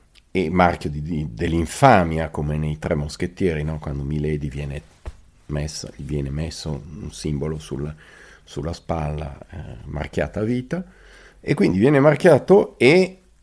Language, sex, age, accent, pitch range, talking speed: Italian, male, 40-59, native, 75-95 Hz, 130 wpm